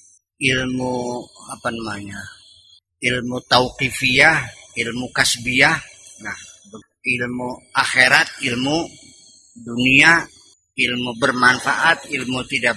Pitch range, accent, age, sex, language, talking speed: 115-150 Hz, native, 30-49, male, Indonesian, 75 wpm